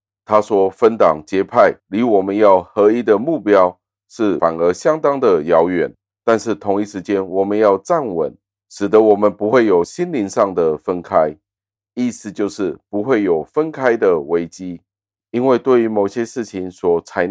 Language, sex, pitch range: Chinese, male, 90-105 Hz